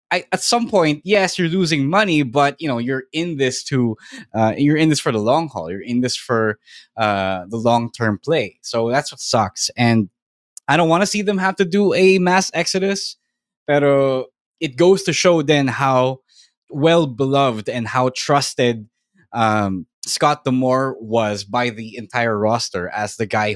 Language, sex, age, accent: English, male, 20-39, Filipino